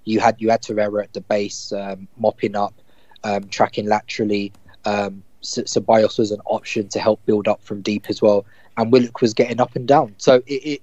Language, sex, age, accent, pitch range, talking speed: English, male, 20-39, British, 110-125 Hz, 205 wpm